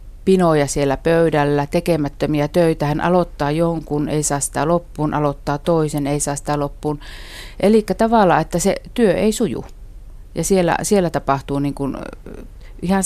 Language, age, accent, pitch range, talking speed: Finnish, 50-69, native, 145-180 Hz, 145 wpm